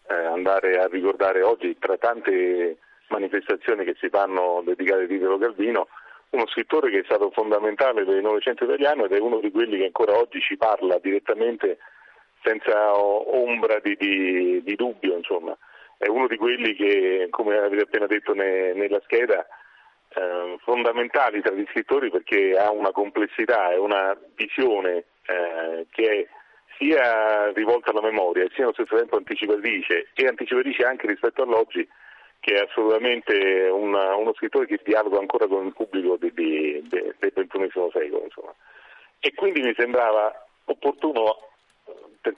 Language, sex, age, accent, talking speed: Italian, male, 40-59, native, 155 wpm